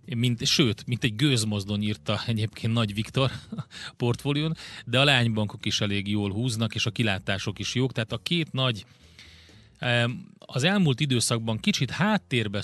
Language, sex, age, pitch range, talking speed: Hungarian, male, 30-49, 105-120 Hz, 145 wpm